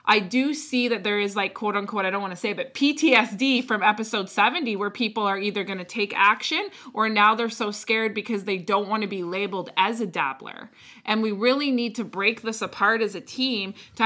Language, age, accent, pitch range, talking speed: English, 20-39, American, 205-250 Hz, 230 wpm